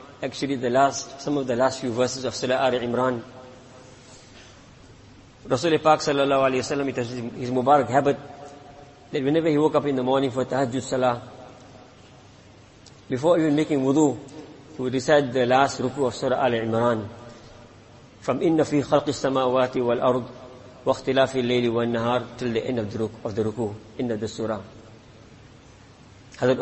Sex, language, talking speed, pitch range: male, English, 155 wpm, 125-145 Hz